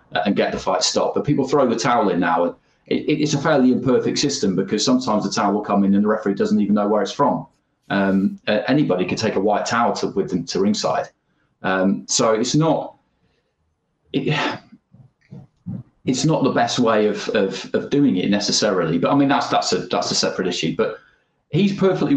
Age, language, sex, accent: 30-49, English, male, British